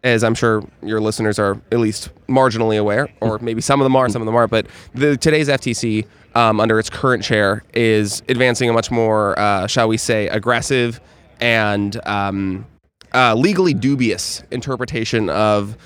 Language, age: English, 20-39